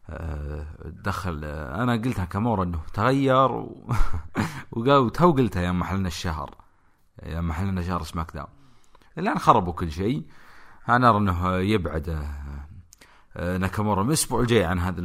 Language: English